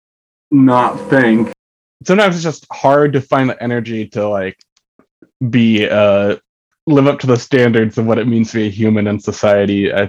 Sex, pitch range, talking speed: male, 105-130 Hz, 180 wpm